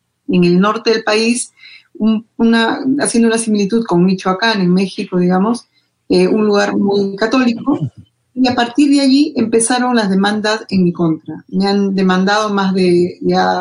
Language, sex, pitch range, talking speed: Spanish, female, 185-240 Hz, 165 wpm